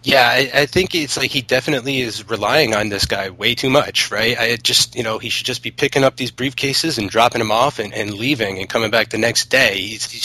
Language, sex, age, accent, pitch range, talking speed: English, male, 30-49, American, 115-140 Hz, 250 wpm